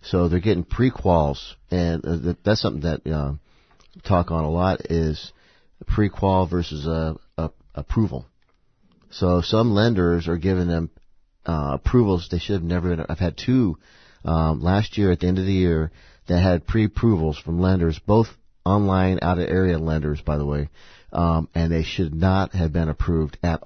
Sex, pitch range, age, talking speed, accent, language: male, 80-100 Hz, 50-69, 165 wpm, American, English